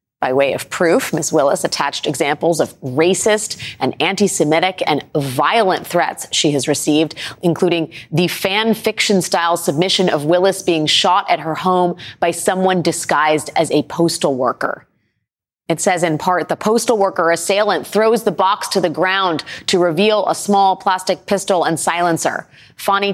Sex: female